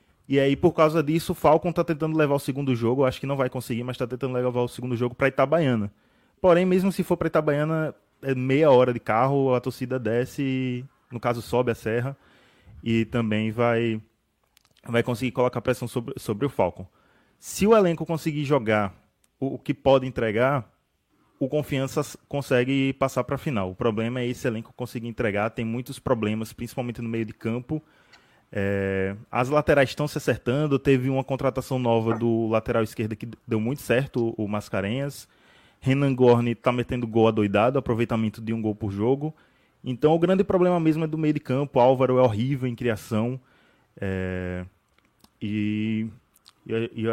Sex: male